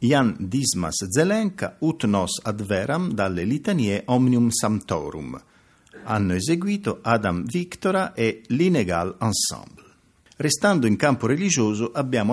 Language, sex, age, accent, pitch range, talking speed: Italian, male, 50-69, native, 95-140 Hz, 110 wpm